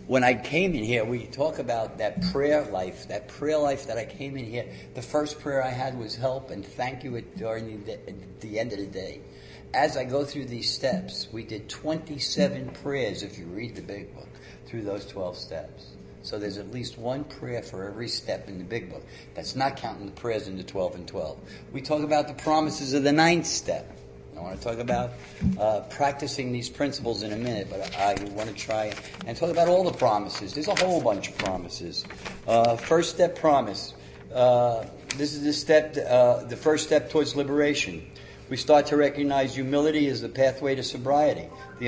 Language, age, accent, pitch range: English, 50-69, American, 115-145 Hz